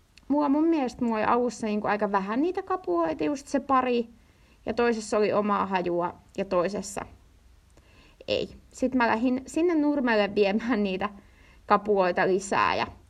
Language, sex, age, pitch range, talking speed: Finnish, female, 20-39, 200-275 Hz, 135 wpm